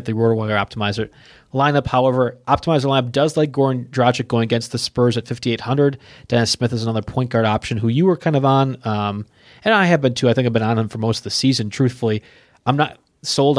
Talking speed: 230 wpm